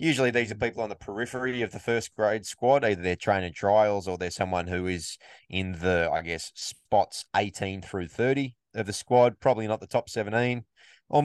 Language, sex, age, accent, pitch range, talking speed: English, male, 20-39, Australian, 90-120 Hz, 210 wpm